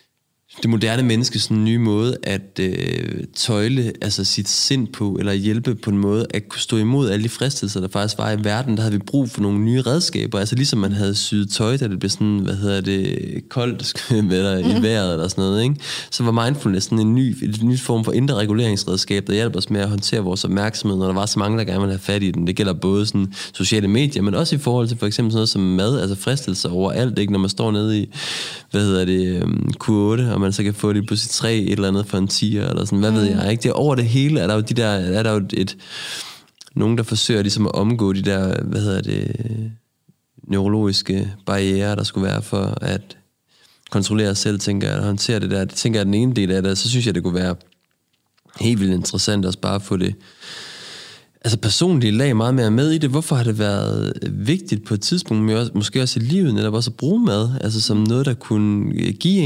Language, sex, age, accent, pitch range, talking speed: Danish, male, 20-39, native, 100-120 Hz, 235 wpm